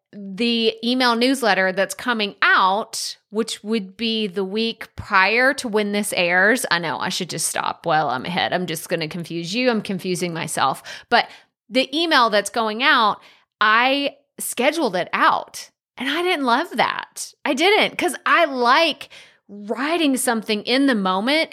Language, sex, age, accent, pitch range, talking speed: English, female, 30-49, American, 200-275 Hz, 160 wpm